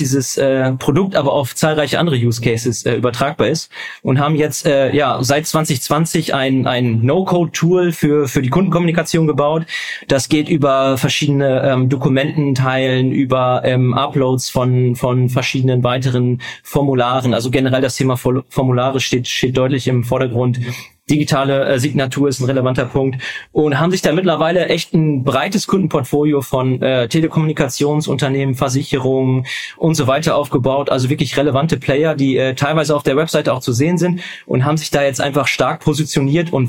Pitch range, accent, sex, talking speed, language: 130-155 Hz, German, male, 155 wpm, German